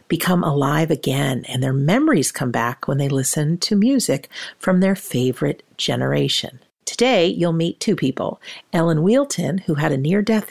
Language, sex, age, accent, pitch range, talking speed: English, female, 50-69, American, 135-180 Hz, 160 wpm